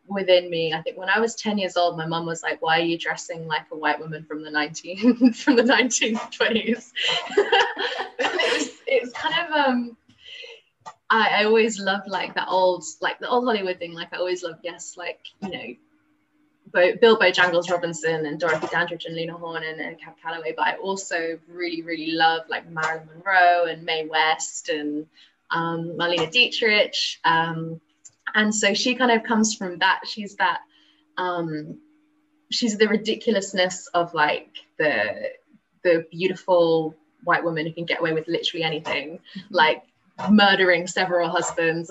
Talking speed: 170 wpm